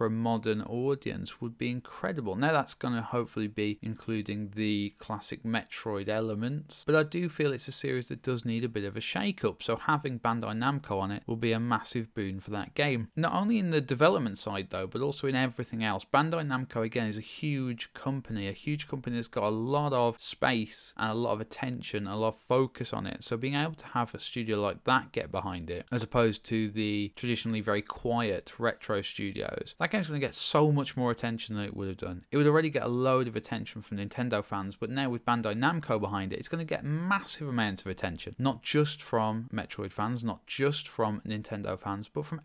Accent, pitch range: British, 105-135 Hz